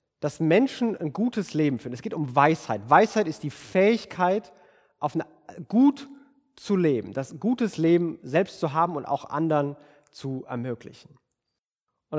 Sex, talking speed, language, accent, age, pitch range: male, 145 wpm, German, German, 30-49, 145-180 Hz